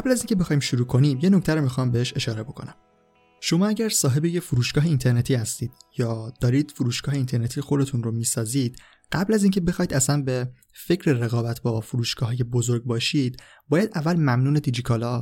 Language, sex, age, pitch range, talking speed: Persian, male, 20-39, 120-145 Hz, 170 wpm